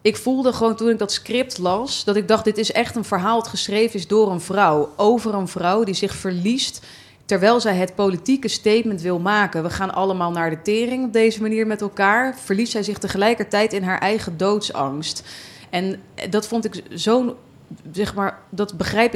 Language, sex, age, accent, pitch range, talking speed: Dutch, female, 30-49, Dutch, 185-220 Hz, 195 wpm